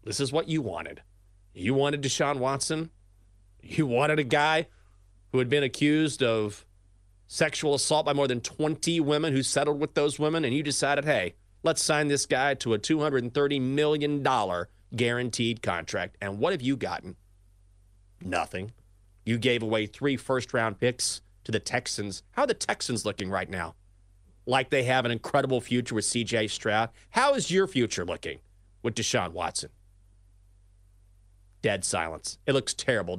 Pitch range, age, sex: 95-145 Hz, 30-49, male